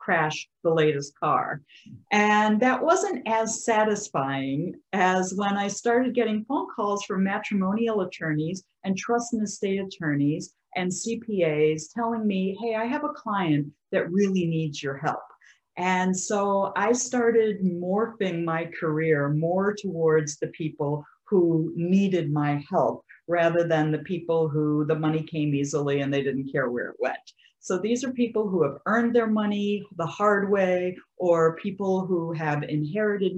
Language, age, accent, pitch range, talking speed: English, 50-69, American, 155-205 Hz, 155 wpm